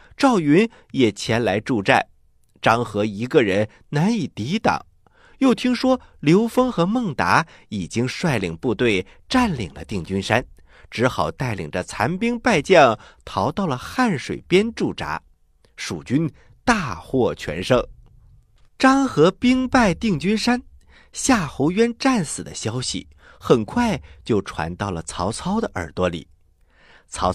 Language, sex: Chinese, male